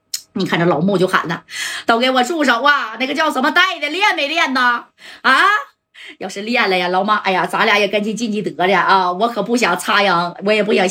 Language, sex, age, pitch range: Chinese, female, 30-49, 190-280 Hz